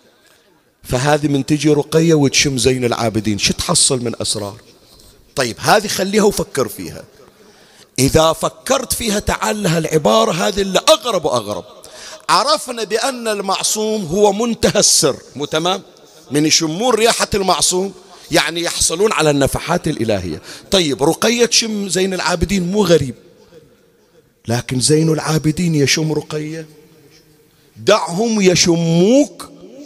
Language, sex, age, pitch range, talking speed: Arabic, male, 40-59, 130-215 Hz, 115 wpm